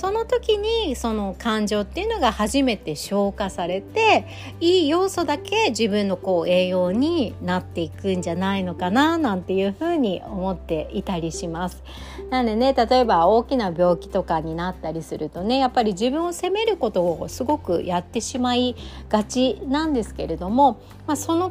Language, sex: Japanese, female